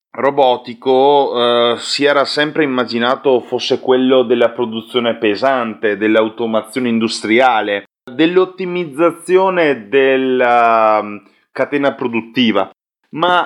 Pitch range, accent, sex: 120-155 Hz, native, male